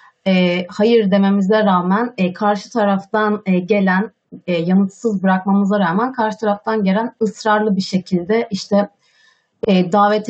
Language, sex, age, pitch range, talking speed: Turkish, female, 30-49, 190-235 Hz, 130 wpm